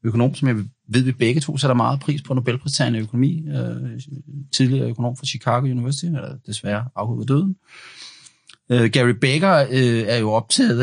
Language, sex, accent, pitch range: Danish, male, native, 120-155 Hz